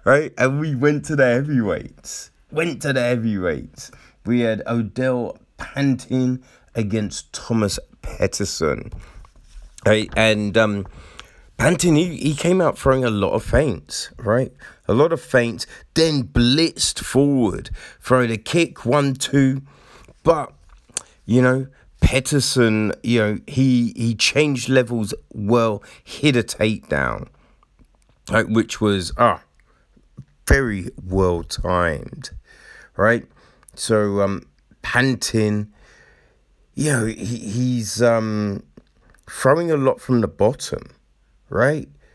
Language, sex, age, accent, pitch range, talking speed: English, male, 30-49, British, 100-130 Hz, 115 wpm